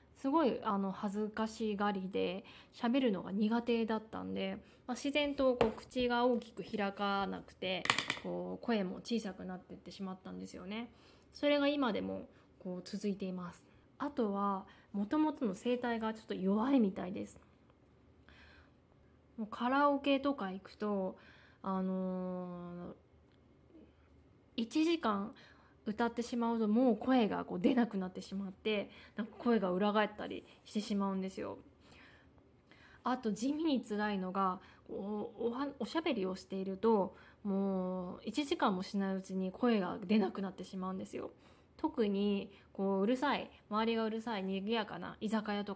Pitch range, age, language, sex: 190-235 Hz, 20-39, Japanese, female